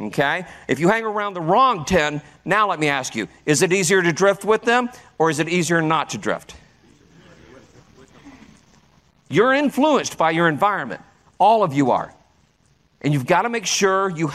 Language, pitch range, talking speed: English, 155-205 Hz, 175 wpm